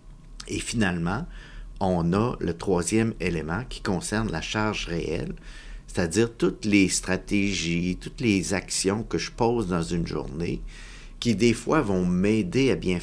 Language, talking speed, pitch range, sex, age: French, 145 wpm, 85-115 Hz, male, 50-69